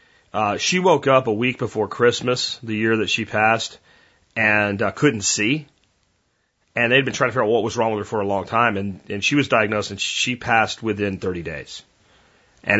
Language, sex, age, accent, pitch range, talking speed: French, male, 30-49, American, 105-135 Hz, 210 wpm